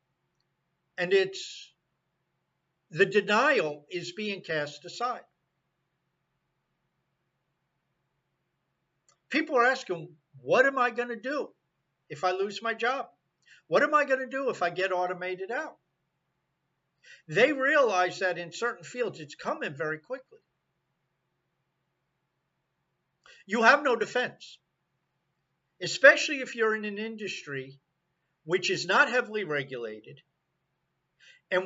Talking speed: 110 wpm